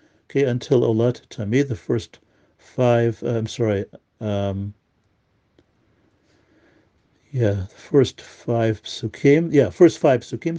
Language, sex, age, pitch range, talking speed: English, male, 50-69, 115-135 Hz, 115 wpm